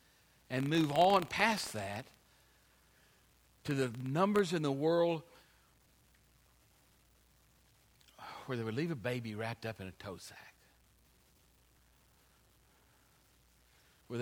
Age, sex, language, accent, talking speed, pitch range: 60-79, male, English, American, 100 wpm, 120-175 Hz